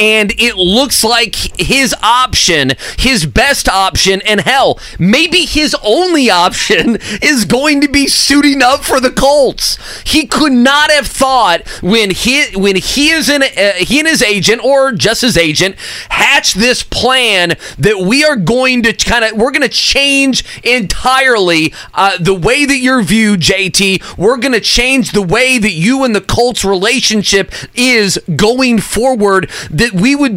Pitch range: 195-250 Hz